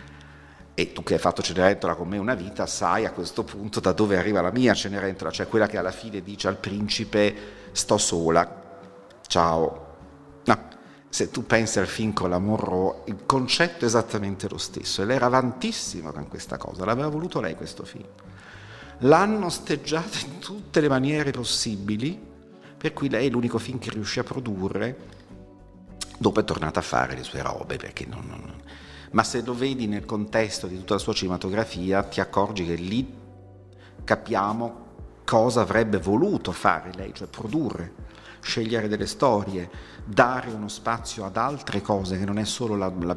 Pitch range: 95-115 Hz